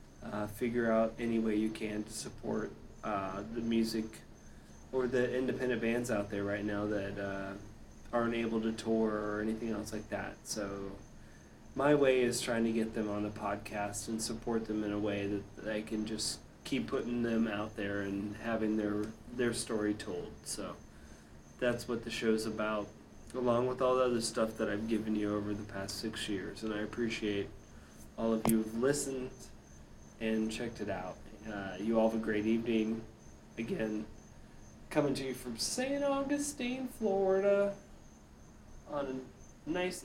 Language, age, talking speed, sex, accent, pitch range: English, 20-39, 170 wpm, male, American, 105-120 Hz